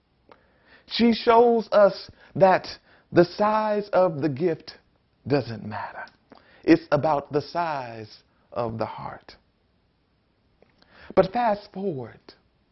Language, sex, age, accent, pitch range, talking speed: English, male, 40-59, American, 135-200 Hz, 100 wpm